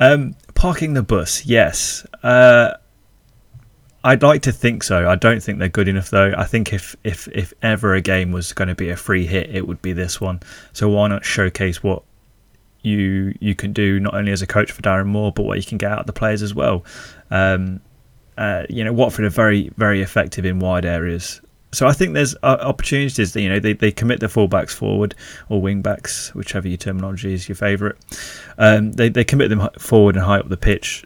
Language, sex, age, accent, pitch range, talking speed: English, male, 20-39, British, 95-115 Hz, 215 wpm